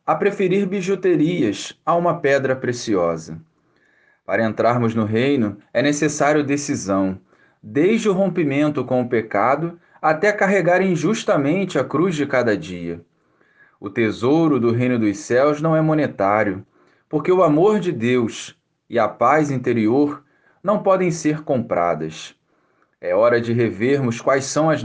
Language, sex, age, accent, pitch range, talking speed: Portuguese, male, 20-39, Brazilian, 115-165 Hz, 140 wpm